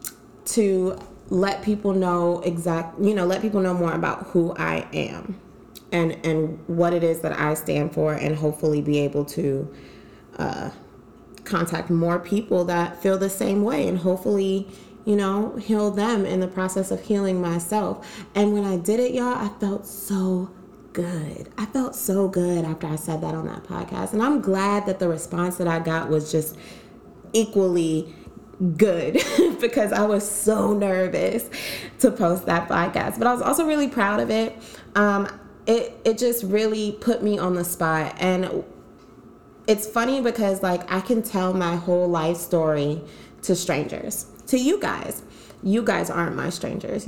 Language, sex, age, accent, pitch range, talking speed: English, female, 20-39, American, 170-210 Hz, 170 wpm